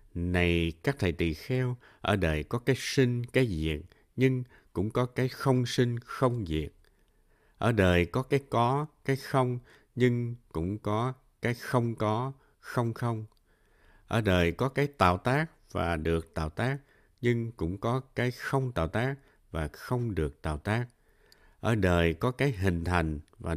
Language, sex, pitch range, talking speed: Vietnamese, male, 85-125 Hz, 165 wpm